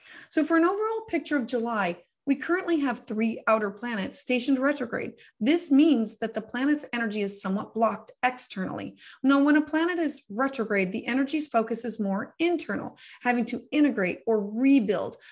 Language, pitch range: English, 220-280 Hz